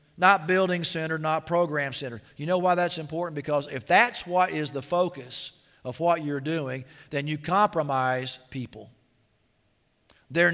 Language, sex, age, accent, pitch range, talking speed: English, male, 50-69, American, 130-160 Hz, 140 wpm